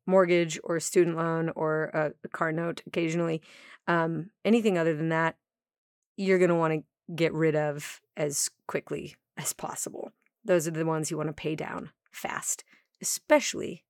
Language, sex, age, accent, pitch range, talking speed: English, female, 30-49, American, 160-195 Hz, 165 wpm